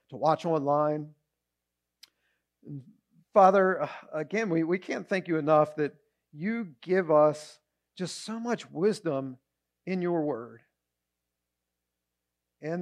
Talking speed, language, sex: 110 wpm, English, male